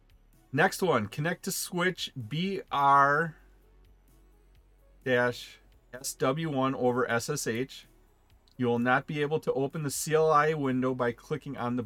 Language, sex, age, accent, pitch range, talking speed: English, male, 40-59, American, 120-160 Hz, 110 wpm